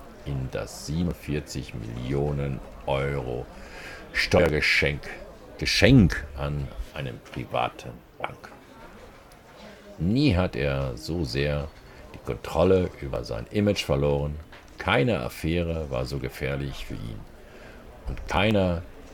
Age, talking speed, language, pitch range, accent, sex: 50-69, 95 wpm, German, 70-85 Hz, German, male